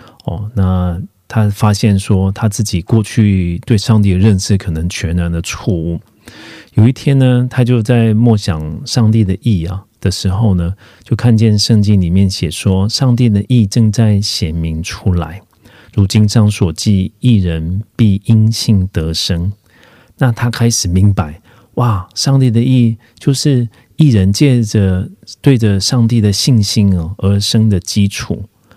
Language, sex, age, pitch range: Korean, male, 40-59, 95-120 Hz